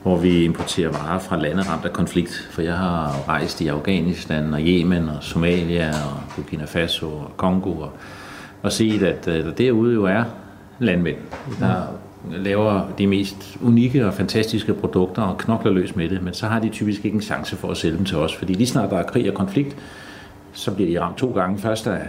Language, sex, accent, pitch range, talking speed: Danish, male, native, 85-105 Hz, 200 wpm